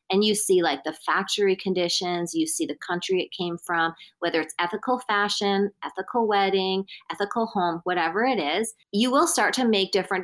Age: 30-49